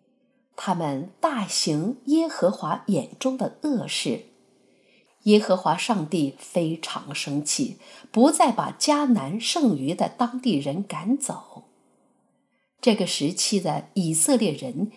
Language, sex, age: Chinese, female, 50-69